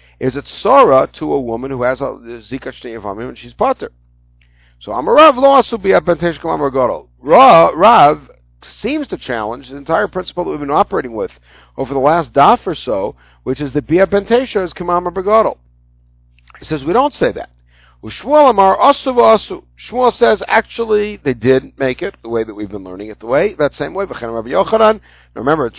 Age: 50-69